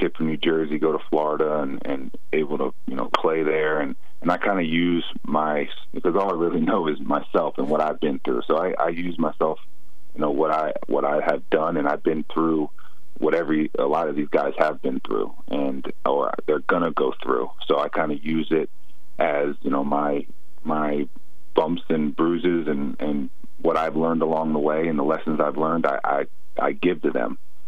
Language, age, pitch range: English, 30-49, 70-80 Hz